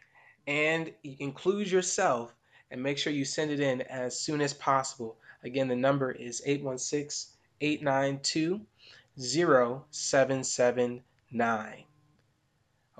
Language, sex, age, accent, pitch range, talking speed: English, male, 20-39, American, 125-150 Hz, 90 wpm